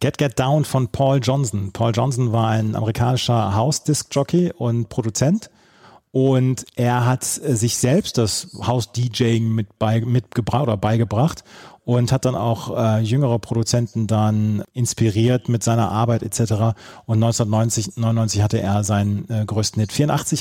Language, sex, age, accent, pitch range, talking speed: German, male, 30-49, German, 110-130 Hz, 145 wpm